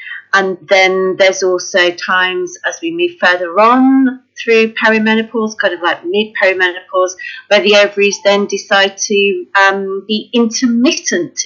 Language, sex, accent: English, female, British